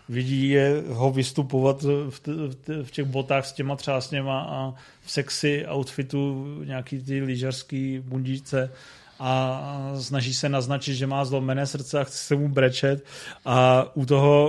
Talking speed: 140 wpm